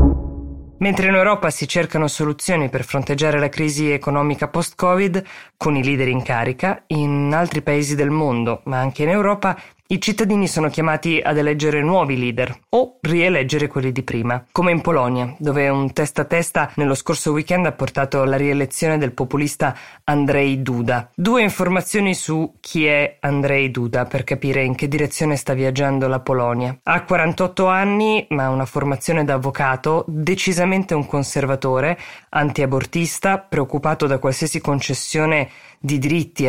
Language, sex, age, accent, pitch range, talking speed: Italian, female, 20-39, native, 135-165 Hz, 155 wpm